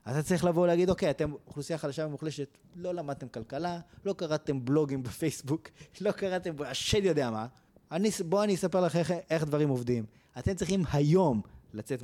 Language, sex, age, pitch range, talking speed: Hebrew, male, 20-39, 130-175 Hz, 175 wpm